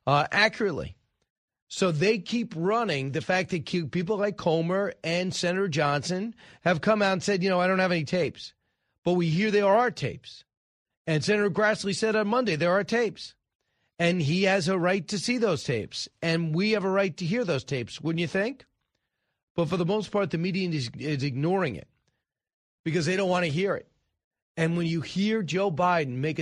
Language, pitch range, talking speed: English, 140-190 Hz, 200 wpm